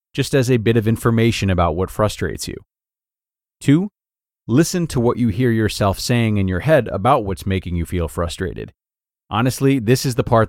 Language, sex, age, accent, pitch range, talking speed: English, male, 30-49, American, 95-125 Hz, 185 wpm